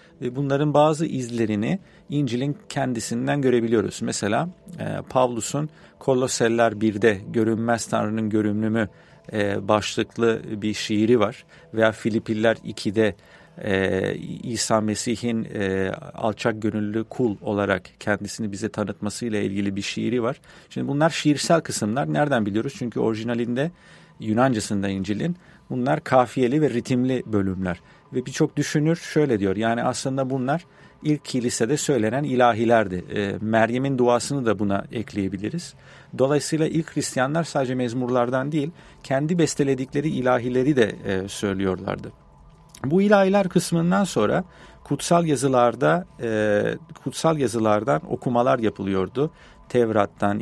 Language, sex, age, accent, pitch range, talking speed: English, male, 40-59, Turkish, 110-145 Hz, 115 wpm